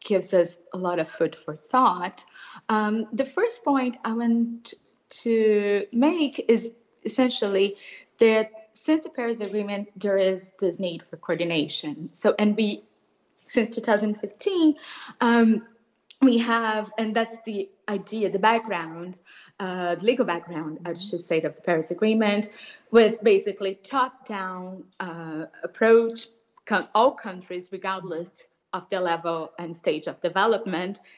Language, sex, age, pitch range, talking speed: English, female, 30-49, 185-235 Hz, 135 wpm